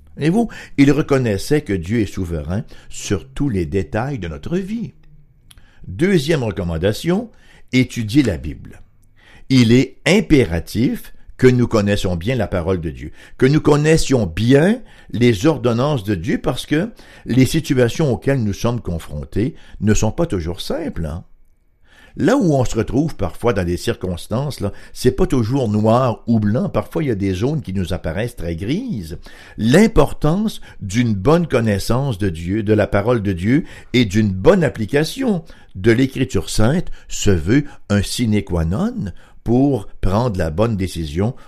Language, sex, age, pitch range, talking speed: English, male, 60-79, 95-140 Hz, 160 wpm